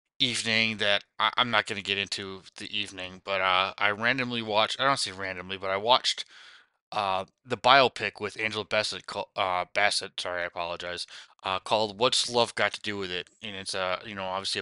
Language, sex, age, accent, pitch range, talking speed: English, male, 20-39, American, 95-115 Hz, 200 wpm